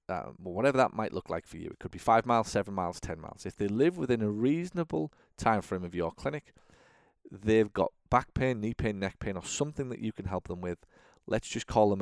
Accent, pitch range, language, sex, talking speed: British, 95-115 Hz, English, male, 240 wpm